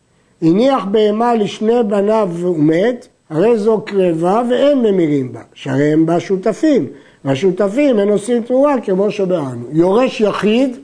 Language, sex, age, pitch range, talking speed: Hebrew, male, 50-69, 180-240 Hz, 125 wpm